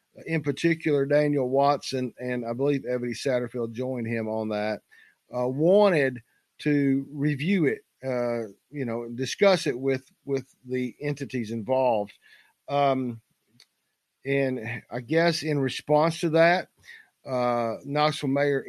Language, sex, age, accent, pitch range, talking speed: English, male, 50-69, American, 125-155 Hz, 125 wpm